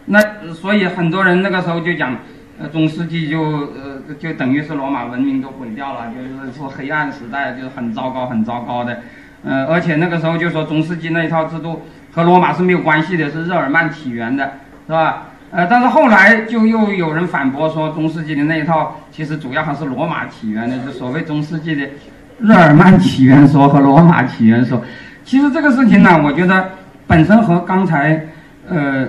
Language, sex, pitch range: English, male, 135-175 Hz